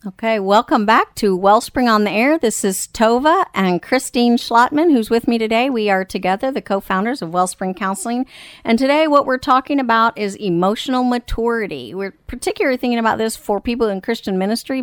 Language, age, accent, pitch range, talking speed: English, 50-69, American, 185-230 Hz, 180 wpm